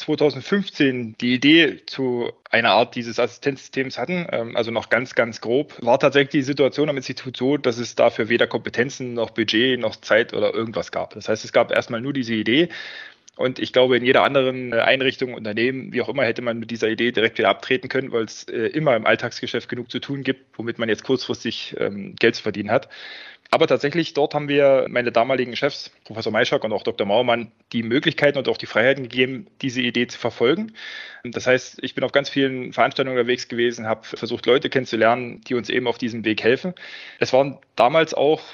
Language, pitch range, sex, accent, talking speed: German, 120-140 Hz, male, German, 200 wpm